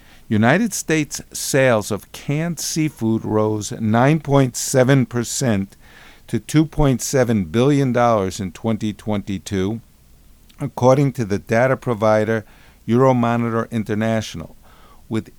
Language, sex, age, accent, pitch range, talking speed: English, male, 50-69, American, 105-135 Hz, 80 wpm